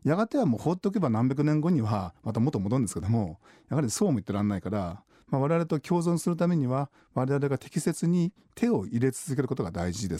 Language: Japanese